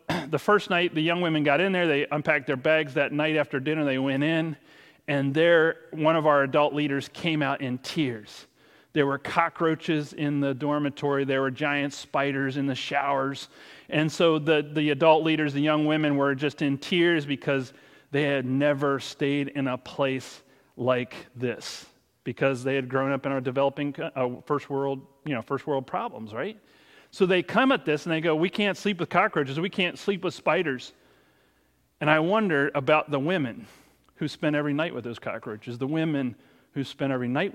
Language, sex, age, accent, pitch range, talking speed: English, male, 40-59, American, 130-155 Hz, 190 wpm